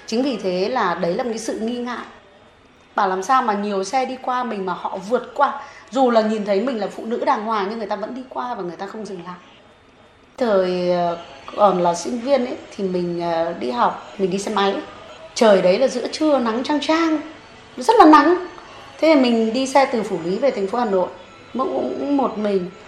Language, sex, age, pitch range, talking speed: Vietnamese, female, 20-39, 200-285 Hz, 230 wpm